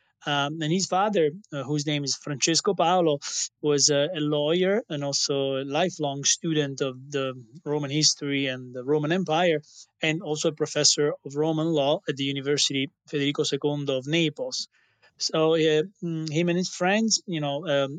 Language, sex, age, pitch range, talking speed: English, male, 30-49, 140-160 Hz, 165 wpm